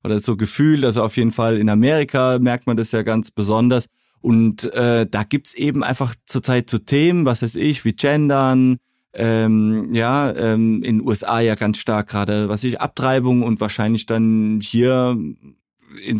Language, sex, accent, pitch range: German, male, German, 110-130 Hz